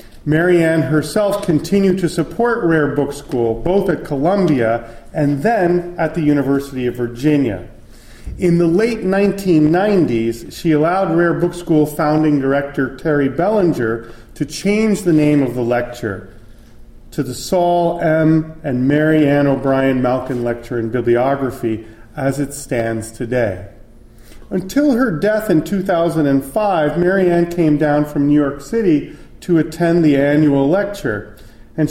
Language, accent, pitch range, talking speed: English, American, 120-170 Hz, 135 wpm